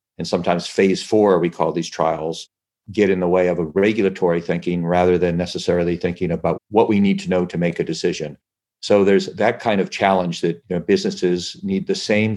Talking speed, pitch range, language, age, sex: 200 wpm, 85-95 Hz, English, 50-69, male